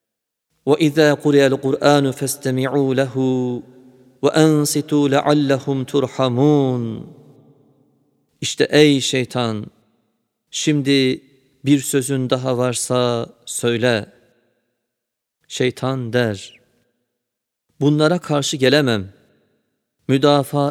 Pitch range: 125-145 Hz